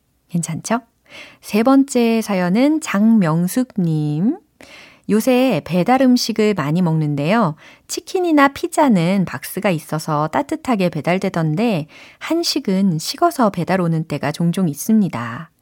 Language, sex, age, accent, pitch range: Korean, female, 30-49, native, 165-245 Hz